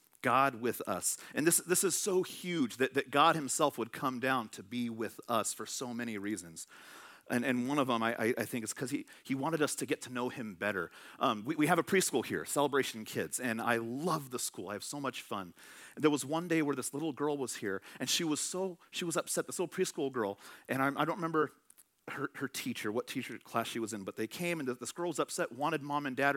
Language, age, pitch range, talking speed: English, 40-59, 135-185 Hz, 255 wpm